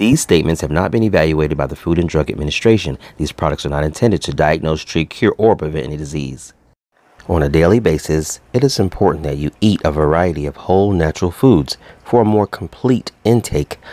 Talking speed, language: 200 wpm, English